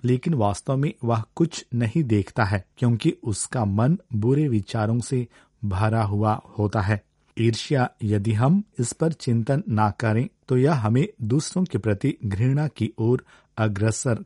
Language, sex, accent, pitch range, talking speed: Hindi, male, native, 110-140 Hz, 155 wpm